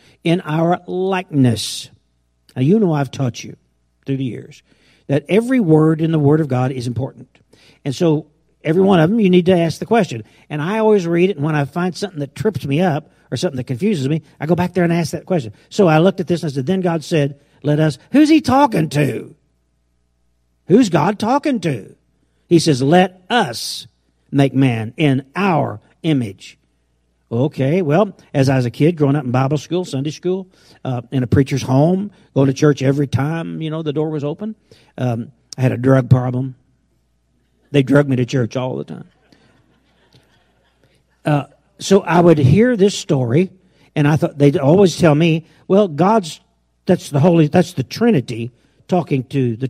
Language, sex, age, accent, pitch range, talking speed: English, male, 50-69, American, 130-175 Hz, 195 wpm